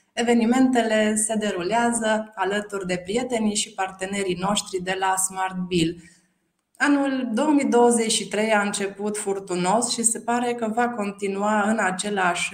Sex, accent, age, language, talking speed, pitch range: female, native, 20-39, Romanian, 125 wpm, 190-220 Hz